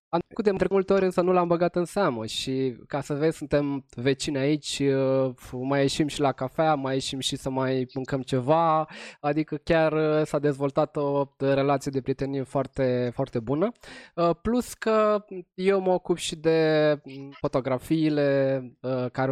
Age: 20-39